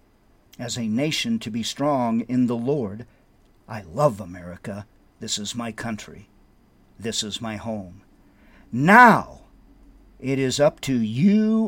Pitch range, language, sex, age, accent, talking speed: 105-150 Hz, English, male, 50-69, American, 135 wpm